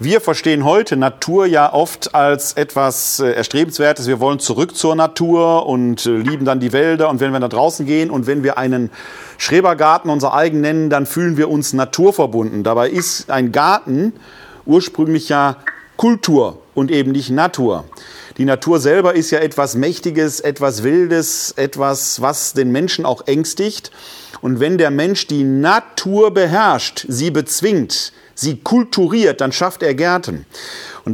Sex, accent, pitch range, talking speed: male, German, 135-175 Hz, 155 wpm